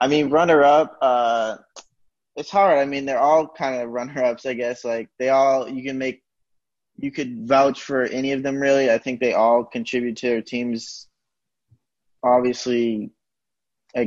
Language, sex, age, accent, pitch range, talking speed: English, male, 20-39, American, 120-135 Hz, 175 wpm